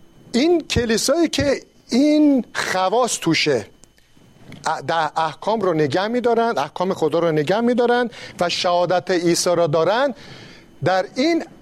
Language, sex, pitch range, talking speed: Persian, male, 170-230 Hz, 120 wpm